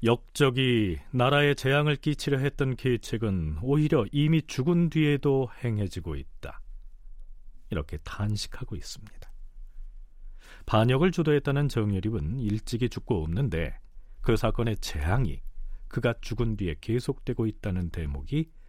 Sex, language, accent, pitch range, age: male, Korean, native, 90-145 Hz, 40-59